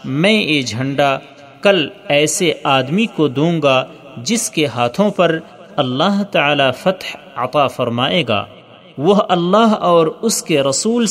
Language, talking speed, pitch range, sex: Urdu, 135 wpm, 140-195 Hz, male